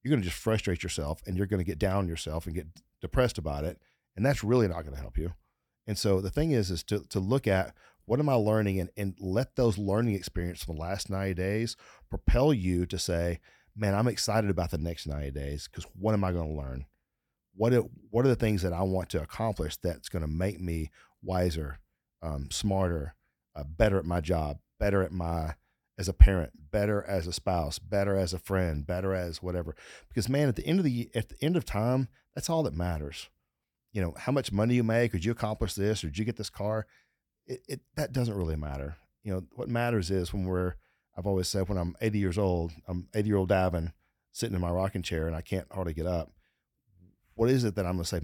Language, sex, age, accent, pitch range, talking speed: English, male, 40-59, American, 80-105 Hz, 235 wpm